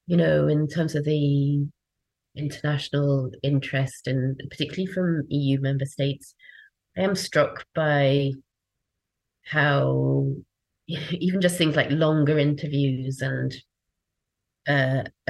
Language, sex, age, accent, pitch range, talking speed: English, female, 30-49, British, 135-150 Hz, 105 wpm